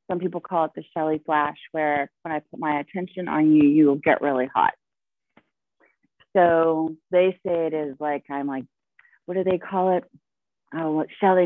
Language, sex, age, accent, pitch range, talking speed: English, female, 30-49, American, 155-190 Hz, 185 wpm